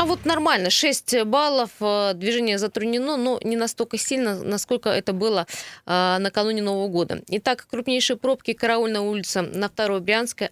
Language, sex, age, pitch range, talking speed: Russian, female, 20-39, 190-235 Hz, 150 wpm